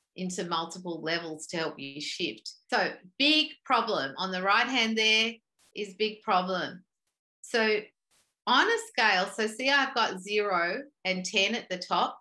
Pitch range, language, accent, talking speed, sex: 175-220 Hz, English, Australian, 155 wpm, female